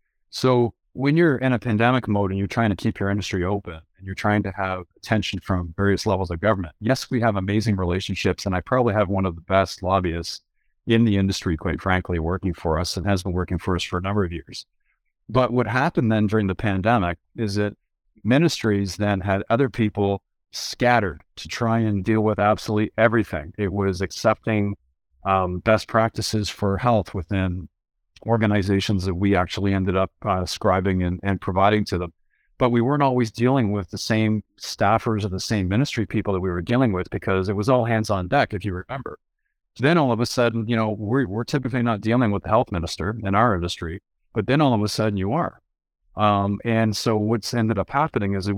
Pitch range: 95-115 Hz